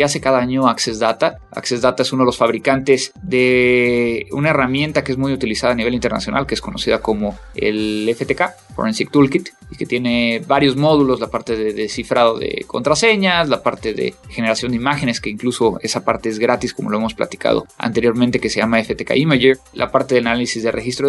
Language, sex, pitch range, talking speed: Spanish, male, 120-150 Hz, 195 wpm